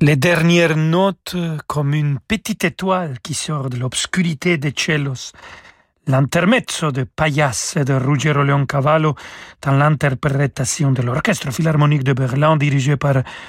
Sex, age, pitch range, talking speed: male, 40-59, 140-185 Hz, 130 wpm